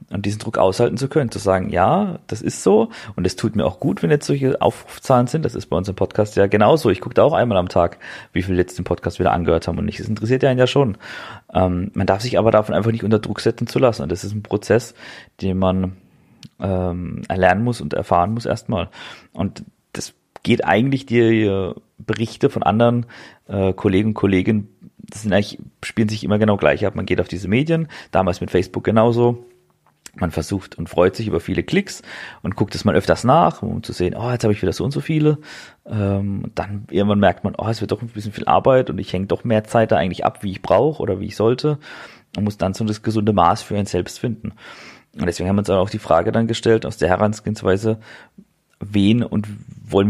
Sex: male